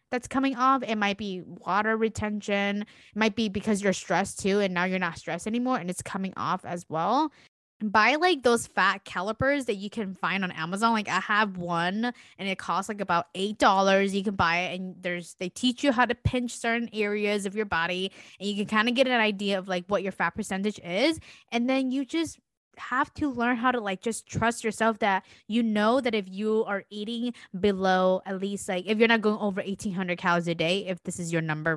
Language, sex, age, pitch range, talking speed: English, female, 20-39, 180-230 Hz, 225 wpm